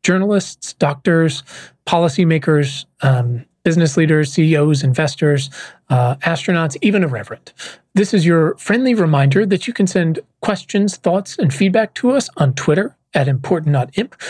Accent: American